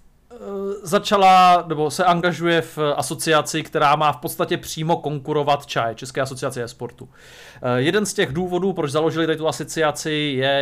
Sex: male